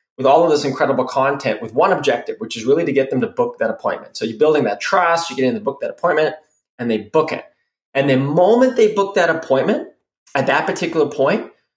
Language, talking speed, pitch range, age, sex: English, 235 wpm, 130-155 Hz, 20-39, male